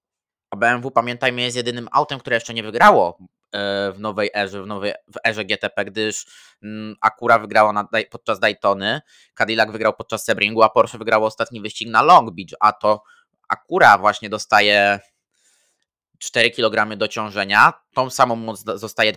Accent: native